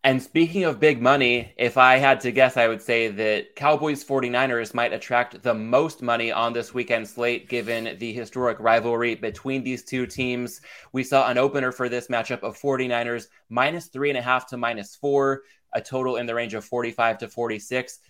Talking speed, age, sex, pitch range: 195 wpm, 20-39, male, 120-135 Hz